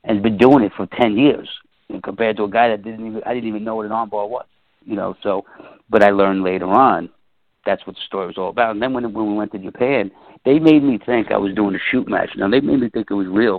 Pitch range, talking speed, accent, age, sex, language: 100-115 Hz, 290 wpm, American, 60-79, male, English